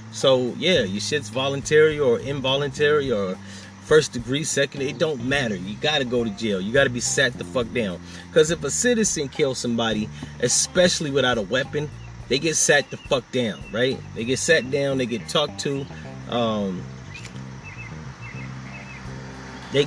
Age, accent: 30-49, American